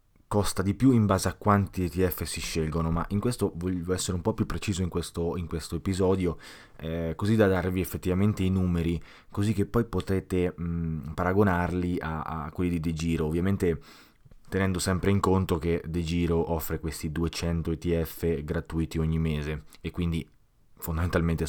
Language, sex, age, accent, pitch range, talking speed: Italian, male, 20-39, native, 80-100 Hz, 170 wpm